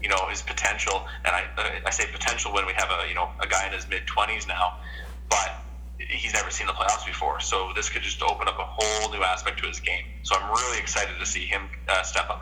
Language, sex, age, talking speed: English, male, 30-49, 245 wpm